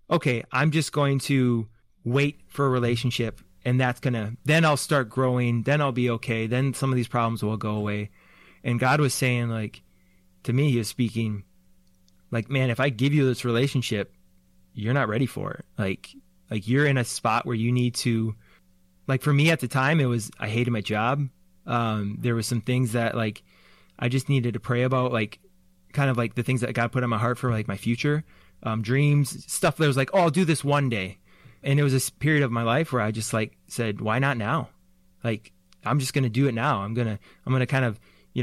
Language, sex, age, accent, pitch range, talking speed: English, male, 20-39, American, 110-140 Hz, 225 wpm